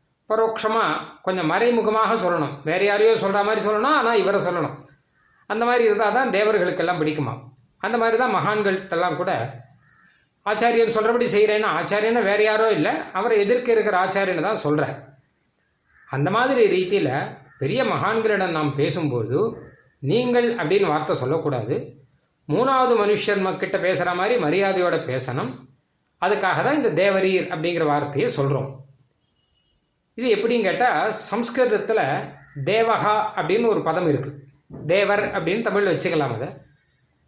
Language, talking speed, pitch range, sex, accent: Tamil, 120 wpm, 145-215 Hz, male, native